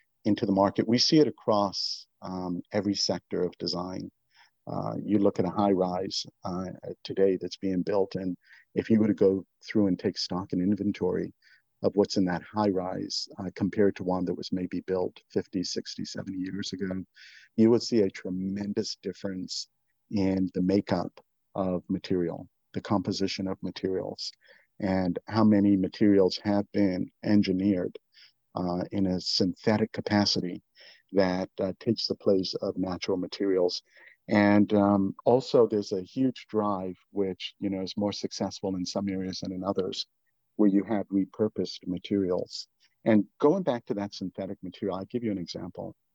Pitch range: 95-105 Hz